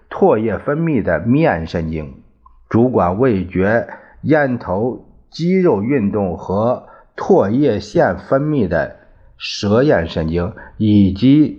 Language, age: Chinese, 50-69